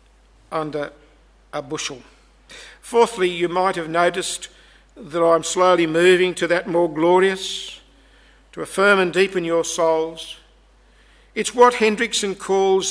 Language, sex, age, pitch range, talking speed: English, male, 50-69, 170-210 Hz, 120 wpm